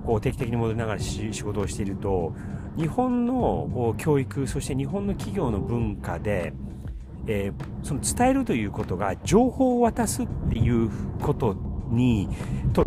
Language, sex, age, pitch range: Japanese, male, 40-59, 100-160 Hz